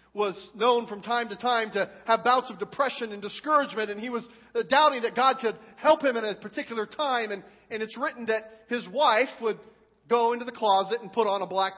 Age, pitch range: 40-59, 200-275 Hz